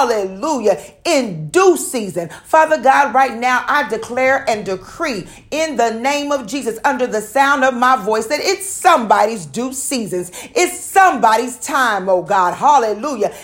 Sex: female